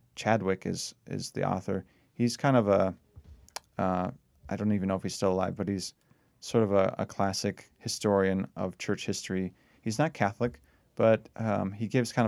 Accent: American